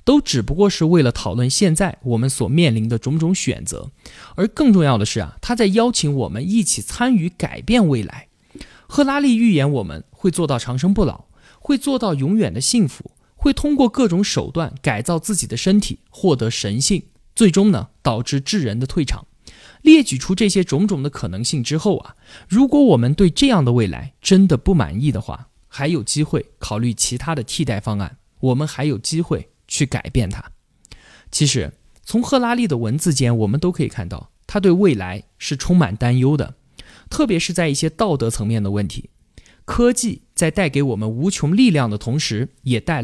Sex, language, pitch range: male, Chinese, 125-200 Hz